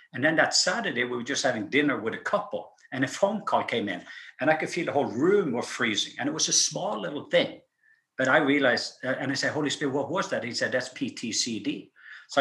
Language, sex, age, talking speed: English, male, 50-69, 240 wpm